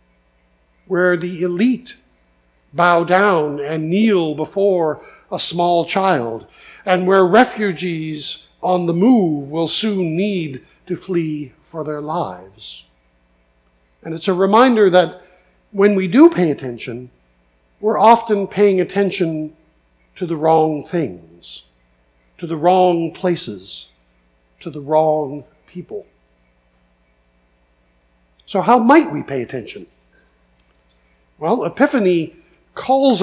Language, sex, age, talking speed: English, male, 50-69, 110 wpm